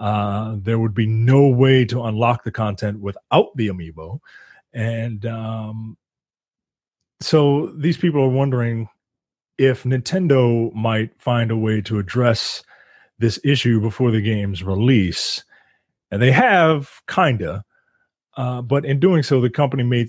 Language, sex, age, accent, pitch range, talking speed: English, male, 30-49, American, 110-130 Hz, 135 wpm